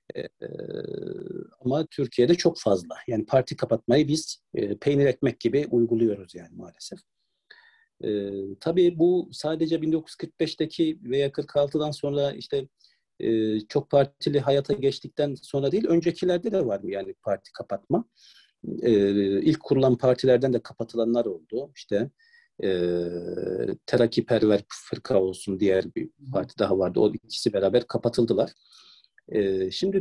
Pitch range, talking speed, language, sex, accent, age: 115-175 Hz, 120 wpm, Turkish, male, native, 50-69